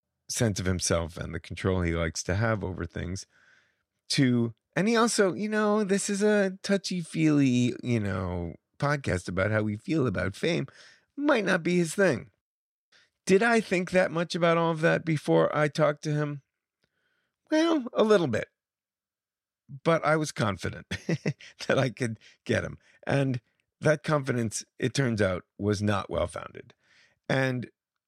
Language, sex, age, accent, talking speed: English, male, 40-59, American, 160 wpm